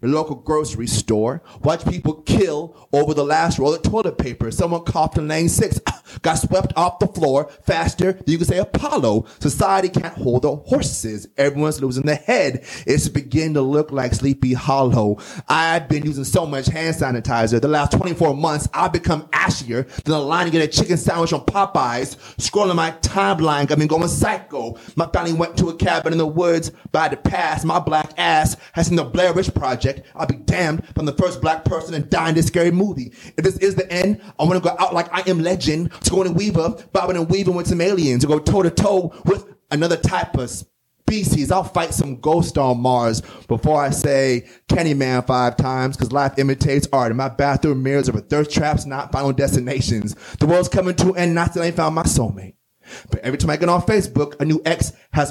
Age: 30-49